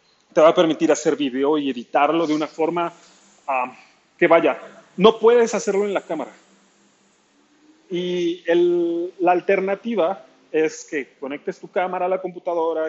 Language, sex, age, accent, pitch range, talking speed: Spanish, male, 30-49, Mexican, 155-215 Hz, 140 wpm